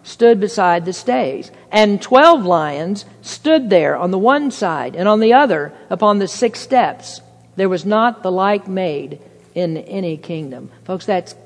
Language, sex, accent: English, female, American